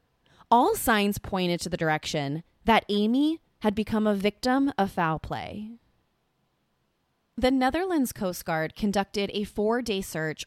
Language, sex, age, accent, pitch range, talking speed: English, female, 20-39, American, 175-240 Hz, 130 wpm